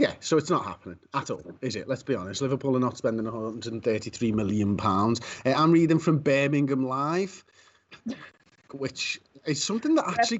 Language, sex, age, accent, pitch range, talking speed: English, male, 30-49, British, 115-165 Hz, 165 wpm